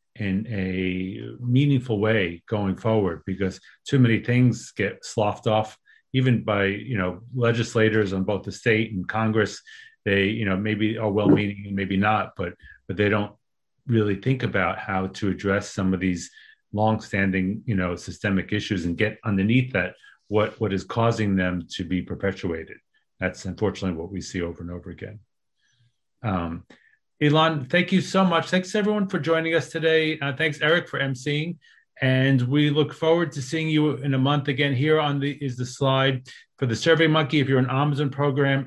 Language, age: English, 40-59